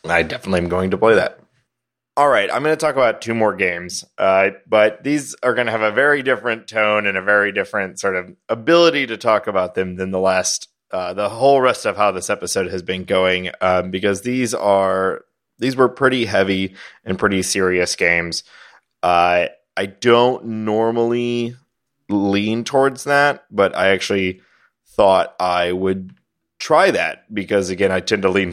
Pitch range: 95-115 Hz